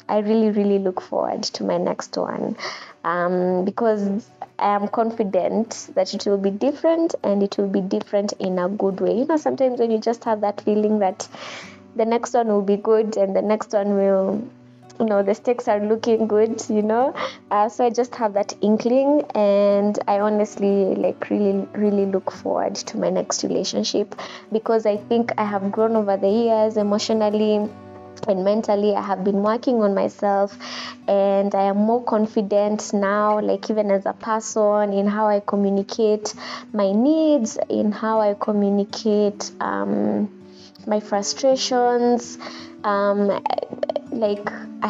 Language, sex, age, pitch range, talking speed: English, female, 20-39, 200-225 Hz, 160 wpm